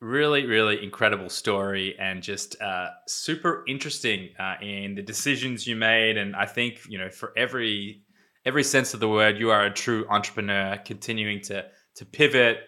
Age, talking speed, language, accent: 20-39, 170 wpm, English, Australian